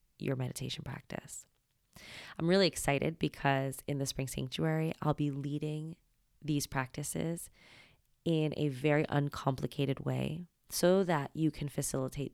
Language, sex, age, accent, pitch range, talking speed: English, female, 20-39, American, 135-155 Hz, 125 wpm